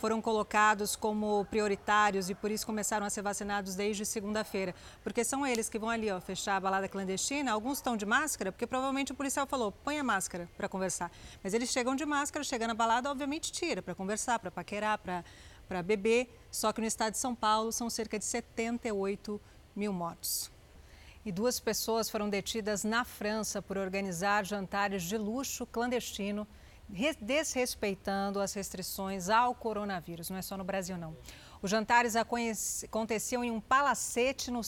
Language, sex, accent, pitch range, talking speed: Portuguese, female, Brazilian, 200-240 Hz, 170 wpm